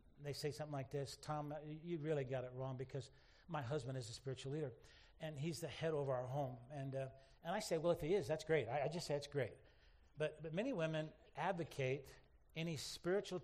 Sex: male